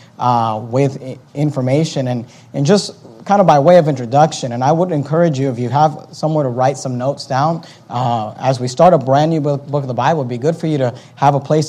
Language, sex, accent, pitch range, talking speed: English, male, American, 125-155 Hz, 245 wpm